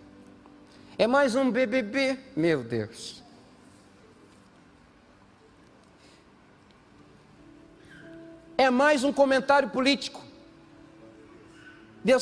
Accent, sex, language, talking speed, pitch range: Brazilian, male, Portuguese, 60 wpm, 210-285 Hz